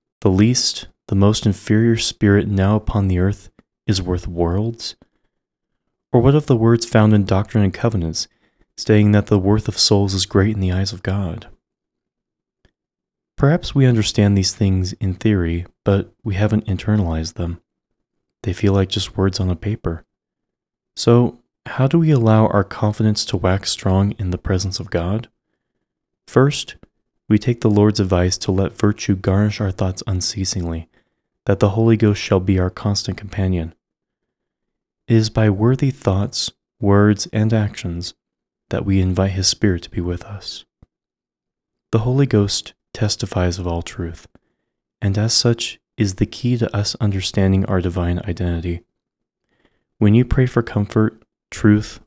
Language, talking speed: English, 155 wpm